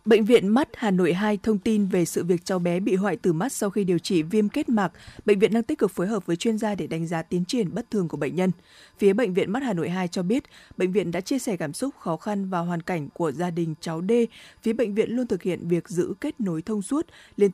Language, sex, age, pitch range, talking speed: Vietnamese, female, 20-39, 175-220 Hz, 285 wpm